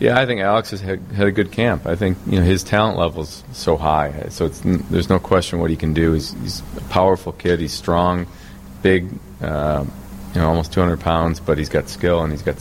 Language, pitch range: English, 80-90 Hz